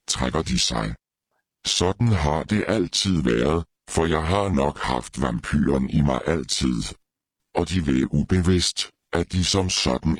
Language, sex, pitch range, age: Danish, female, 70-90 Hz, 60-79